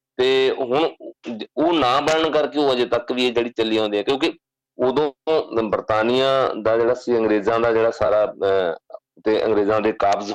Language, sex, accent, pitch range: English, male, Indian, 110-135 Hz